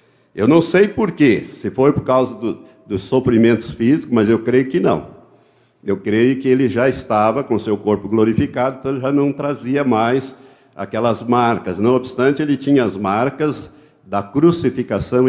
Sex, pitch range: male, 120-170 Hz